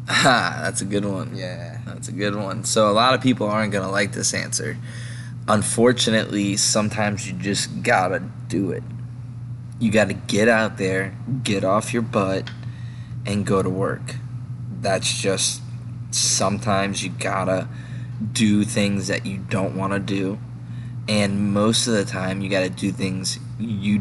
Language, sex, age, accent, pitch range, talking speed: English, male, 20-39, American, 100-120 Hz, 170 wpm